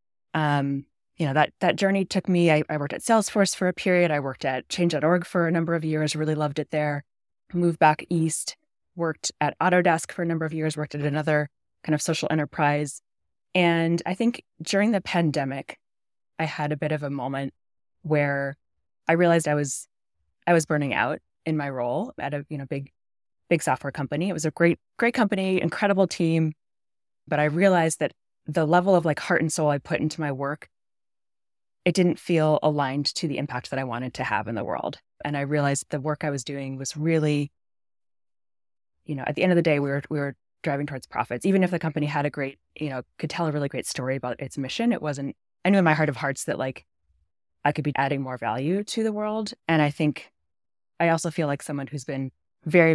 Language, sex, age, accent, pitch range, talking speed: English, female, 20-39, American, 135-165 Hz, 220 wpm